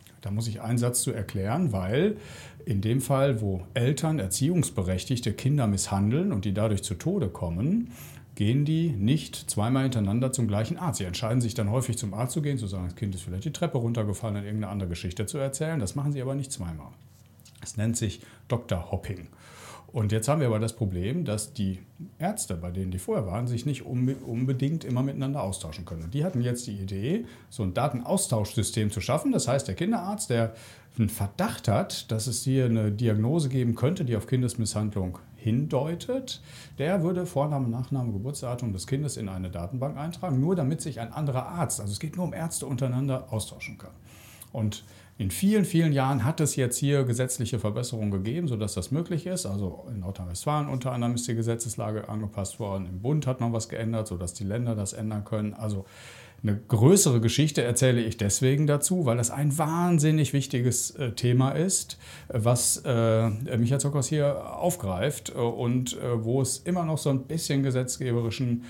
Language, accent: German, German